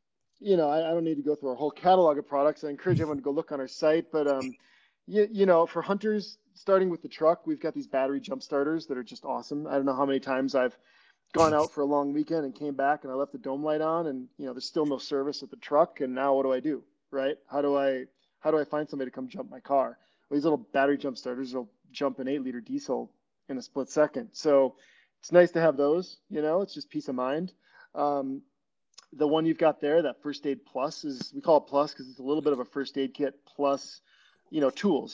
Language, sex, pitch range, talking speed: English, male, 135-155 Hz, 265 wpm